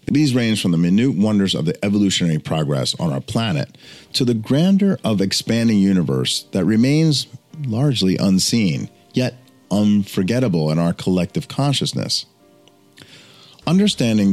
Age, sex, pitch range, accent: 40-59, male, 95-135 Hz, American